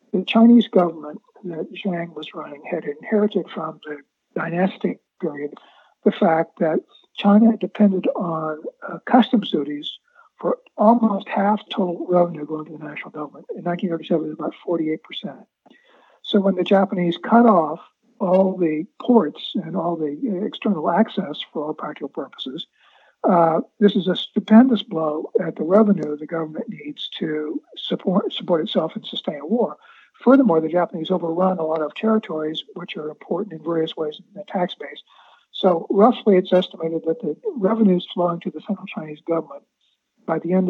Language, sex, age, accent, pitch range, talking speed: English, male, 60-79, American, 160-215 Hz, 160 wpm